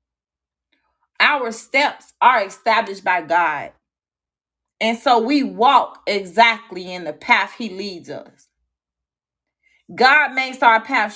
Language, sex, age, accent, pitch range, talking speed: English, female, 30-49, American, 175-270 Hz, 115 wpm